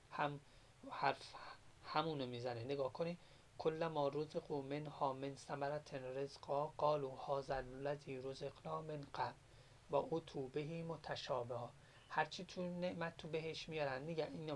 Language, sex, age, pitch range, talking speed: Persian, male, 30-49, 135-165 Hz, 125 wpm